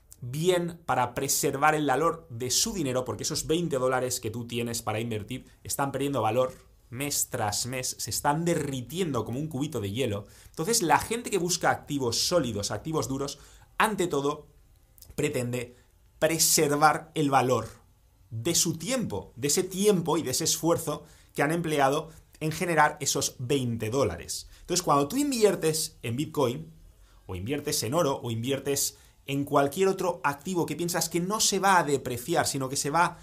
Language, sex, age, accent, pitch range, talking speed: English, male, 30-49, Spanish, 120-160 Hz, 165 wpm